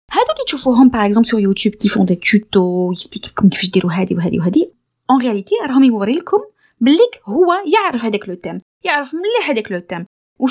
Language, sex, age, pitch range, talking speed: Arabic, female, 20-39, 210-290 Hz, 170 wpm